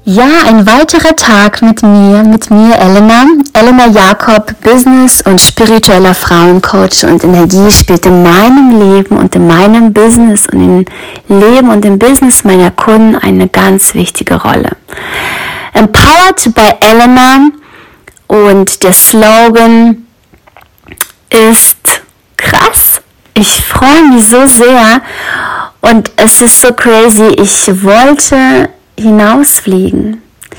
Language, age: German, 20-39